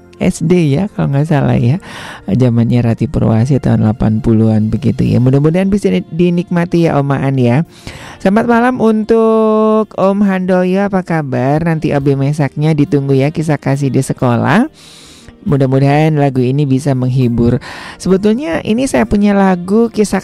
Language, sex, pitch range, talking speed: Indonesian, male, 135-185 Hz, 140 wpm